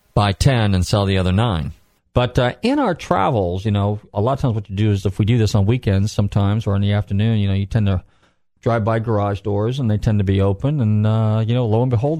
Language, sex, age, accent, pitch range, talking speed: English, male, 40-59, American, 100-115 Hz, 270 wpm